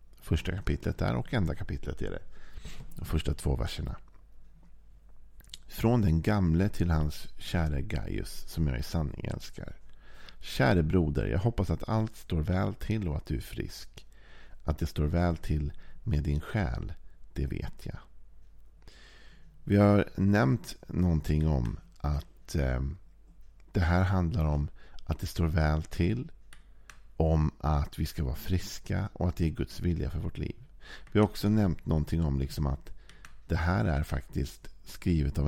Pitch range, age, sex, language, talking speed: 75-95 Hz, 50-69, male, Swedish, 155 wpm